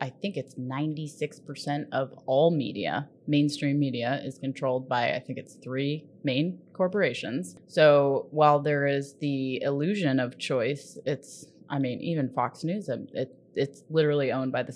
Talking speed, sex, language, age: 160 wpm, female, English, 20-39